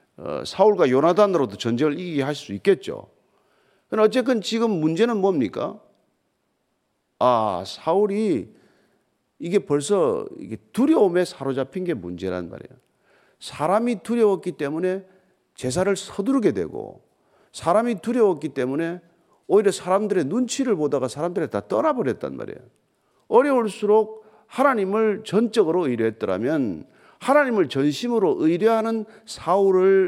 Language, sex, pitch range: Korean, male, 160-235 Hz